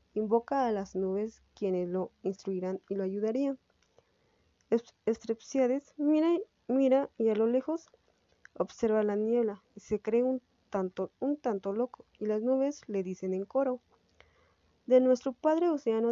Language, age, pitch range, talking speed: Spanish, 20-39, 205-255 Hz, 145 wpm